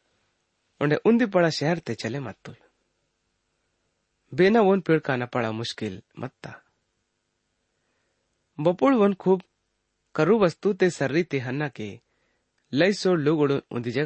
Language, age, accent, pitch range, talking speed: English, 30-49, Indian, 105-165 Hz, 80 wpm